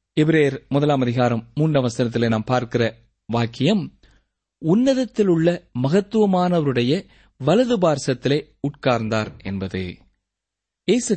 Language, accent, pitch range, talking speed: Tamil, native, 125-200 Hz, 80 wpm